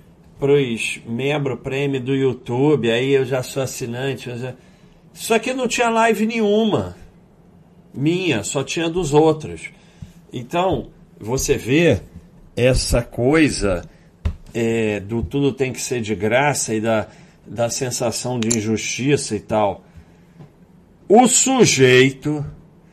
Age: 50-69